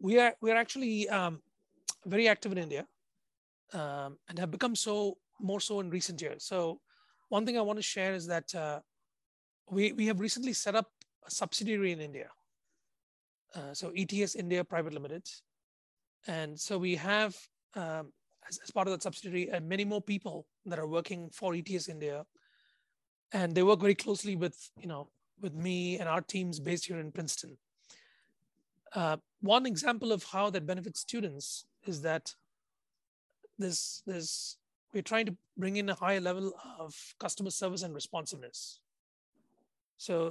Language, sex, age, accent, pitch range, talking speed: English, male, 30-49, Indian, 165-200 Hz, 165 wpm